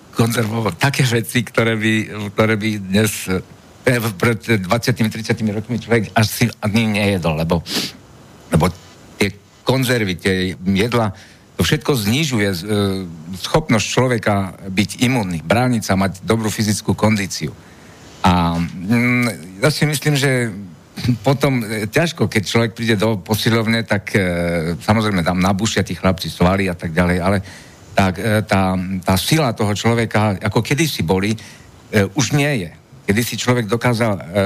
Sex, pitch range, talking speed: male, 95-120 Hz, 130 wpm